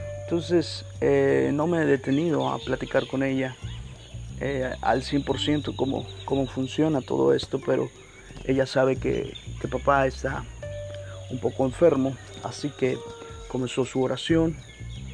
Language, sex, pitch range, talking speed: Spanish, male, 100-135 Hz, 130 wpm